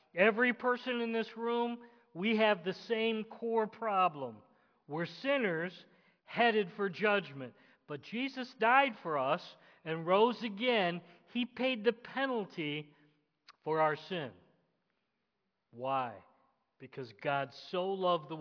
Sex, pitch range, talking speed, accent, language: male, 155-225 Hz, 120 wpm, American, English